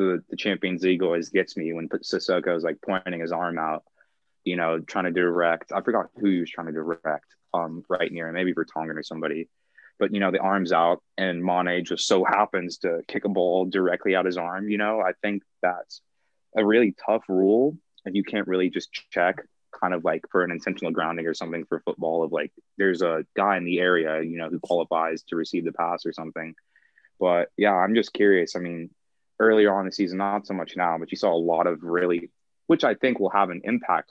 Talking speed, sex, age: 225 wpm, male, 20-39